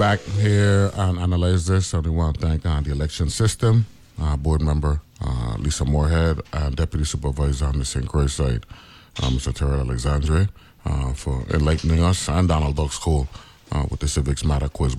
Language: English